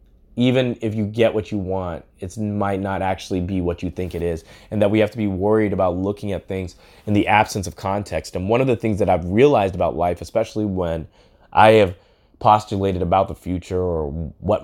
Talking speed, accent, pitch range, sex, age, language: 215 wpm, American, 90-110 Hz, male, 20-39, English